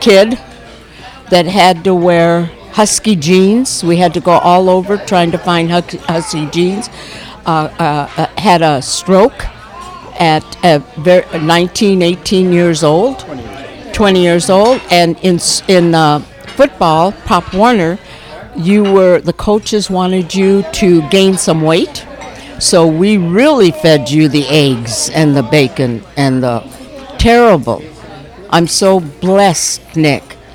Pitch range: 150-185 Hz